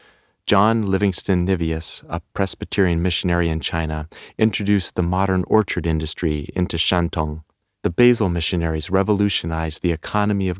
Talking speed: 125 wpm